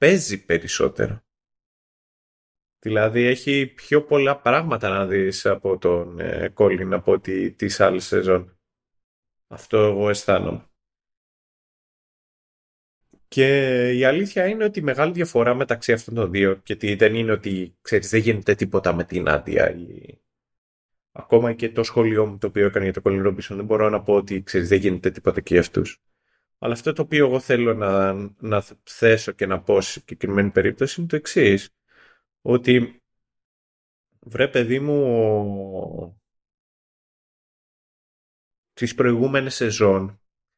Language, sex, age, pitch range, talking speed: Greek, male, 30-49, 95-125 Hz, 140 wpm